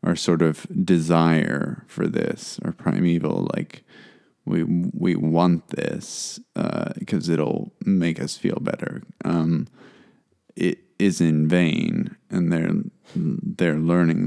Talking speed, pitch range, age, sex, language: 120 wpm, 80-95 Hz, 20-39, male, English